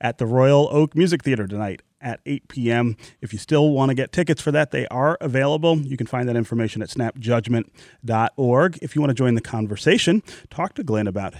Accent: American